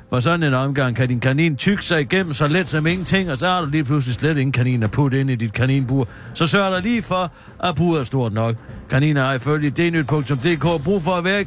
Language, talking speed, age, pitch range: Danish, 245 wpm, 50-69, 130-180 Hz